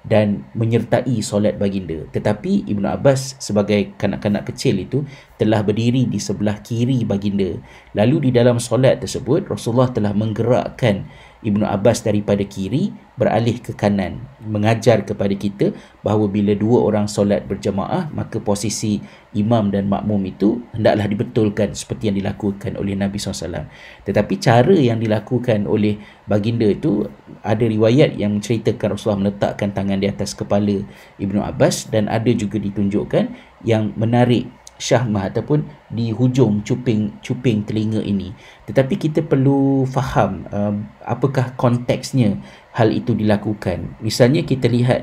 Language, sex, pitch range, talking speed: Malay, male, 105-125 Hz, 135 wpm